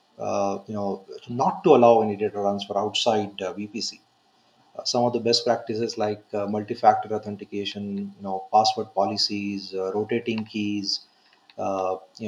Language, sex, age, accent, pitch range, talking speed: English, male, 30-49, Indian, 105-125 Hz, 150 wpm